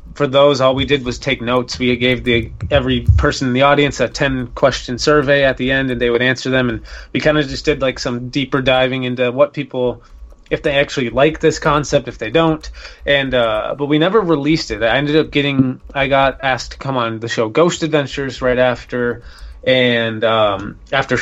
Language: English